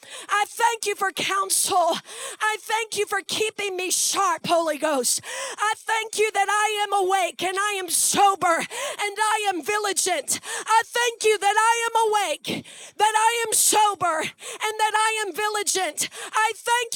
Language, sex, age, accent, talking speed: English, female, 30-49, American, 165 wpm